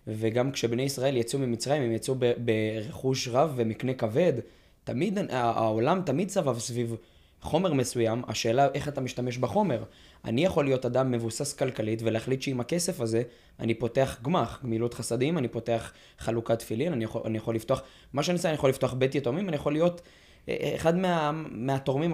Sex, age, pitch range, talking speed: male, 20-39, 115-145 Hz, 170 wpm